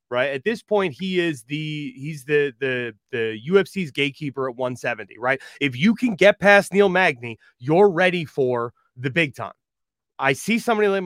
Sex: male